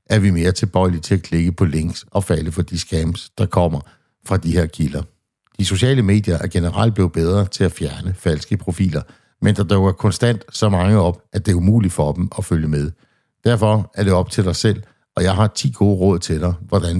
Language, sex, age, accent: Danish, male, 60-79, native